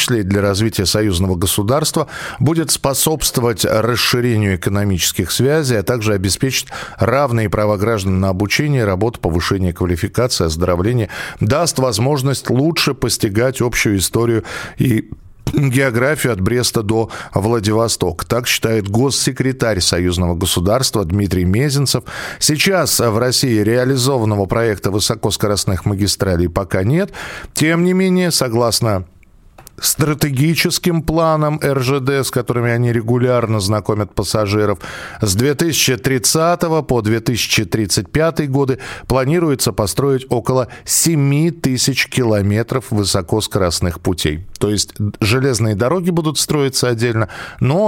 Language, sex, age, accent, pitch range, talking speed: Russian, male, 40-59, native, 100-135 Hz, 105 wpm